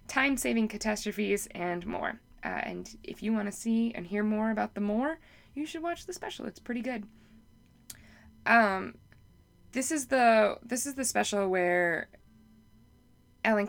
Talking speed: 155 wpm